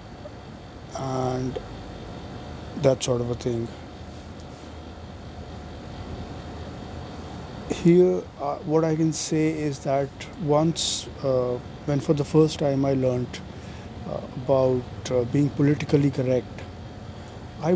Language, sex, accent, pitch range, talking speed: English, male, Indian, 105-145 Hz, 100 wpm